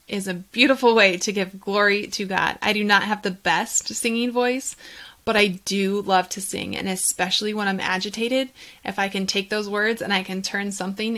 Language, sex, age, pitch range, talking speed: English, female, 20-39, 190-240 Hz, 210 wpm